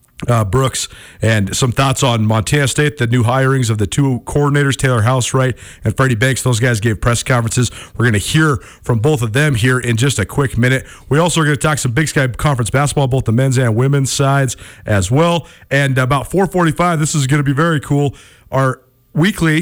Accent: American